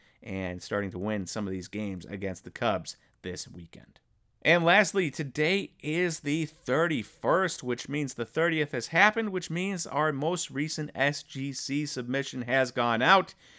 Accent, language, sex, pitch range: American, English, male, 115-150 Hz